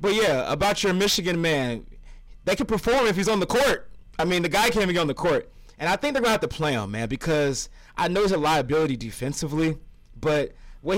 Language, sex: English, male